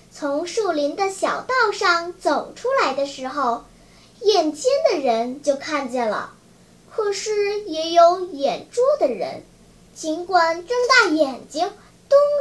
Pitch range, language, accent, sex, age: 285-390 Hz, Chinese, native, male, 10-29